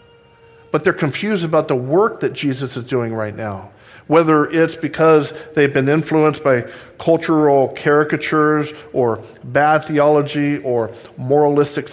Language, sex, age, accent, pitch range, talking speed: English, male, 50-69, American, 120-155 Hz, 130 wpm